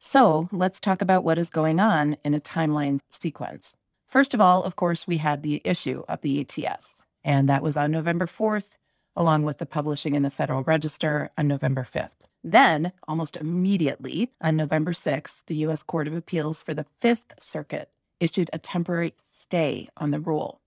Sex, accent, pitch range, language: female, American, 150-180 Hz, English